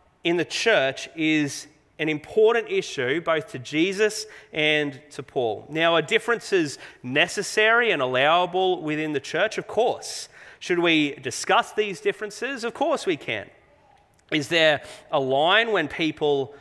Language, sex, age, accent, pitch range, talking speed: English, male, 30-49, Australian, 140-205 Hz, 140 wpm